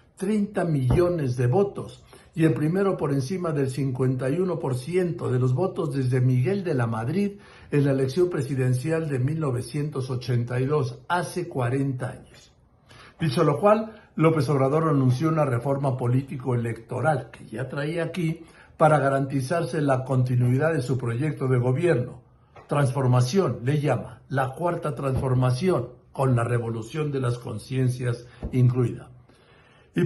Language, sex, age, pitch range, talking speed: Spanish, male, 60-79, 130-170 Hz, 130 wpm